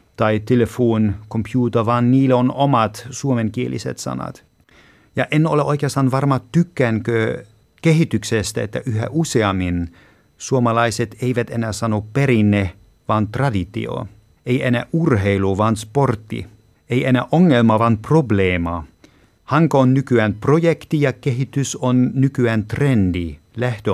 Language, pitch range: Finnish, 105-130 Hz